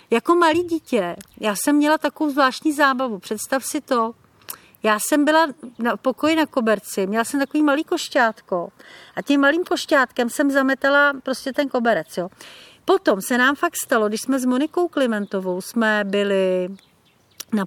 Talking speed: 155 wpm